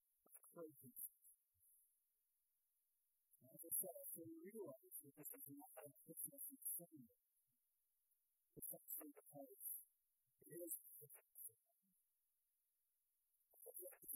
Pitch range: 150-230 Hz